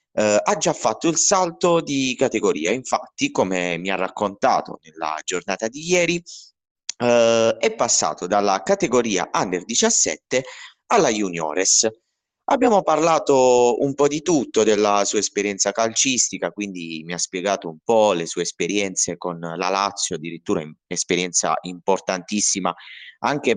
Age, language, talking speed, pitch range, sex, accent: 30-49, Italian, 135 wpm, 90-120 Hz, male, native